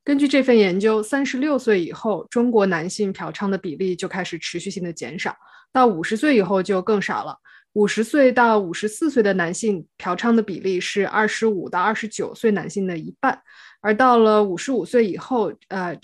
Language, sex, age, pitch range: Chinese, female, 20-39, 185-235 Hz